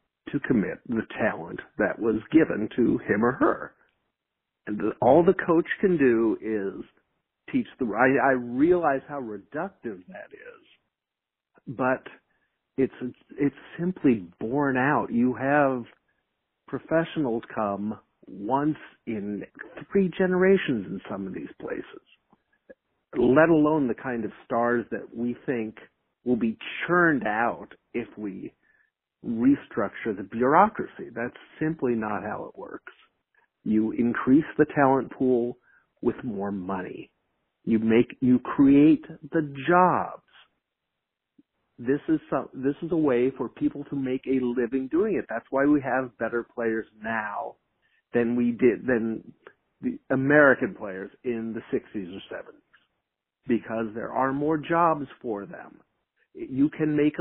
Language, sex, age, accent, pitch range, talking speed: English, male, 50-69, American, 120-165 Hz, 135 wpm